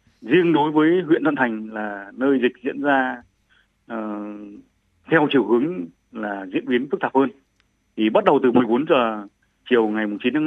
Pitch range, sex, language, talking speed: 115-150 Hz, male, Vietnamese, 180 wpm